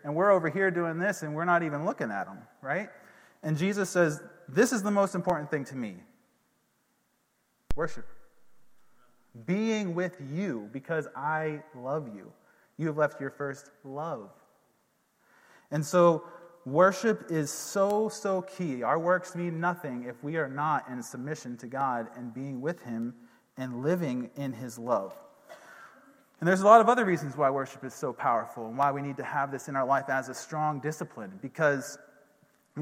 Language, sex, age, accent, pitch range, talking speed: English, male, 30-49, American, 140-175 Hz, 175 wpm